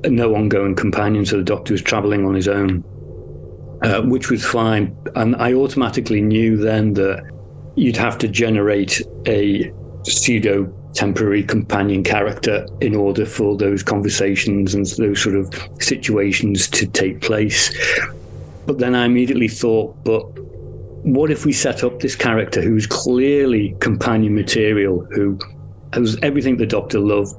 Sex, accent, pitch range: male, British, 100-115 Hz